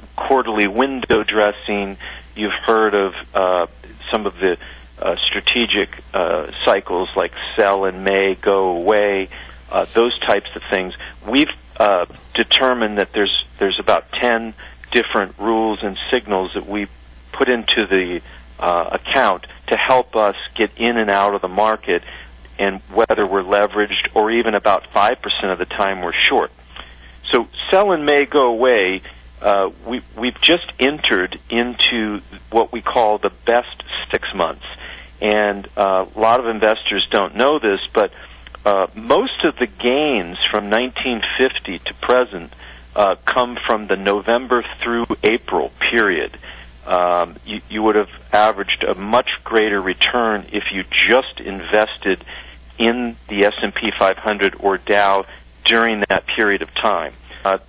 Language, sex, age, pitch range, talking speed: English, male, 40-59, 95-115 Hz, 145 wpm